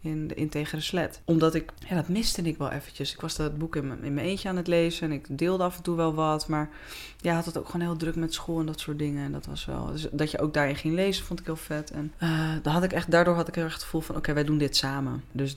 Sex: female